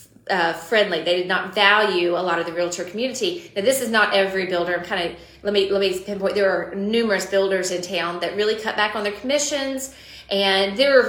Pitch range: 180-215 Hz